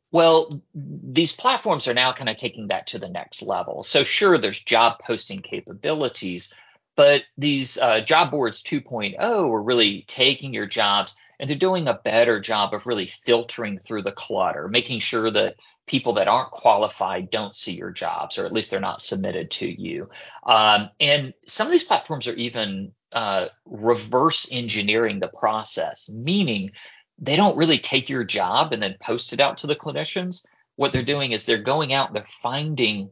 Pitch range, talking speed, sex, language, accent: 110-145 Hz, 180 wpm, male, English, American